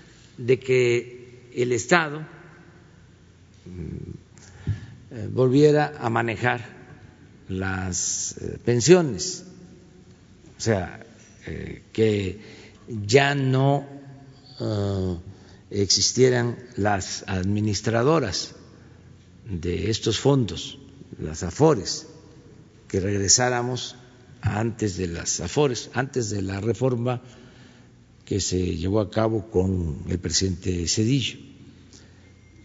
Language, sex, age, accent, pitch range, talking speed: Spanish, male, 50-69, Mexican, 100-140 Hz, 75 wpm